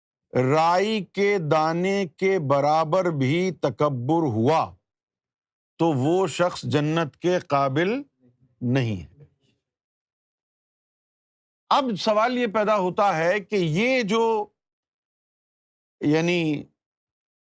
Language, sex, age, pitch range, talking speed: Urdu, male, 50-69, 145-210 Hz, 90 wpm